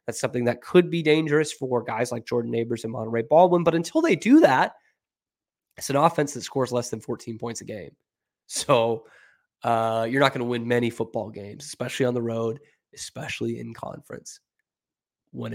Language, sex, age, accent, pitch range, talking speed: English, male, 20-39, American, 125-200 Hz, 185 wpm